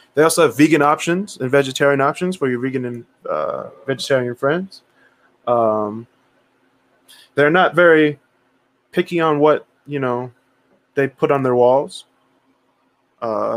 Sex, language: male, English